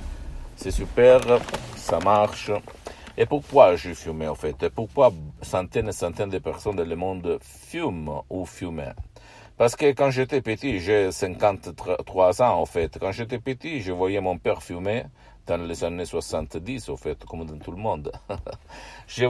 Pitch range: 85-110 Hz